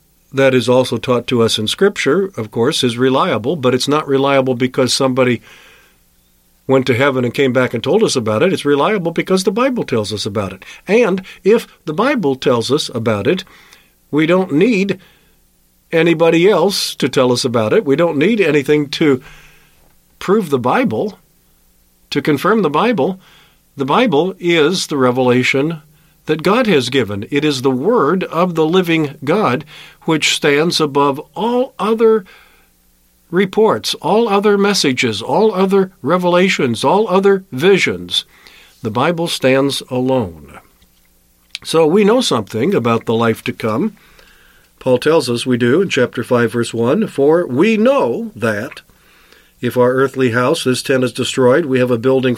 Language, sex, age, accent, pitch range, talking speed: English, male, 50-69, American, 125-175 Hz, 160 wpm